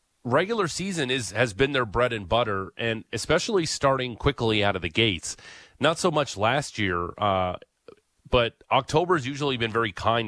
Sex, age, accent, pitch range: male, 30-49, American, 105-140 Hz